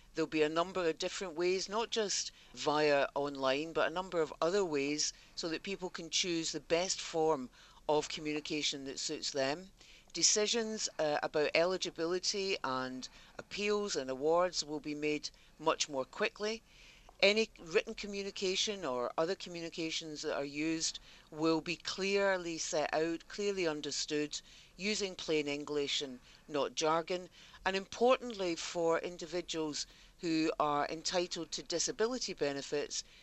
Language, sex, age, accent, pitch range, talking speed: English, female, 60-79, British, 145-180 Hz, 135 wpm